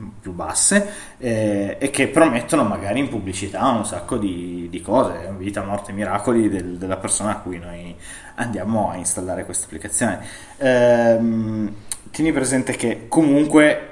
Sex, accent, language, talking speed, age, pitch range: male, native, Italian, 135 wpm, 20-39, 100-120 Hz